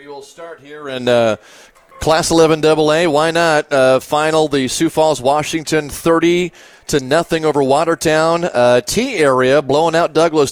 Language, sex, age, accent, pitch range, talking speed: English, male, 30-49, American, 140-175 Hz, 155 wpm